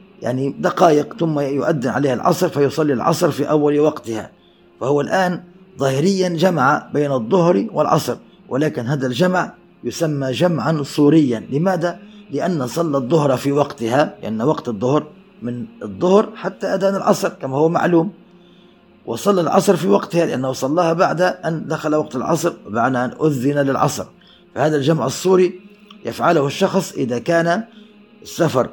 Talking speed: 135 wpm